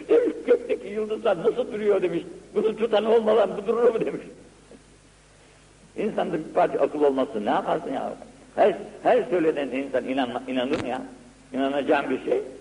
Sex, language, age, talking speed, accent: male, Turkish, 70-89, 150 wpm, native